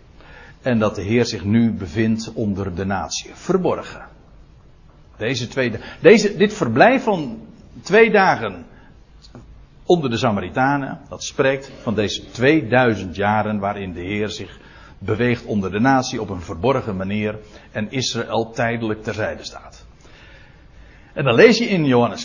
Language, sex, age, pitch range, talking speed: Dutch, male, 60-79, 110-165 Hz, 140 wpm